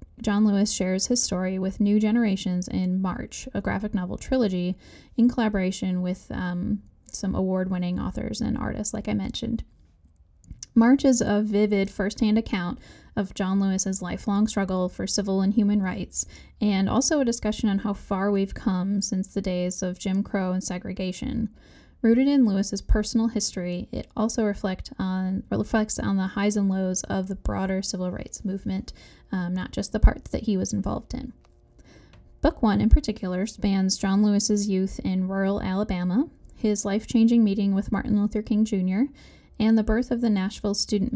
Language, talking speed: English, 170 wpm